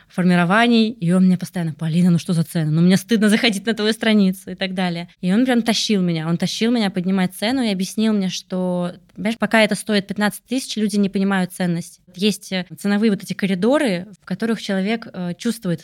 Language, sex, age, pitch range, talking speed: Russian, female, 20-39, 180-225 Hz, 200 wpm